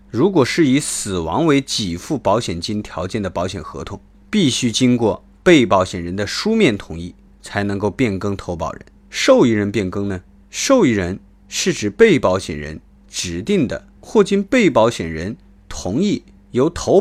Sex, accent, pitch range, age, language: male, native, 95-140 Hz, 30-49, Chinese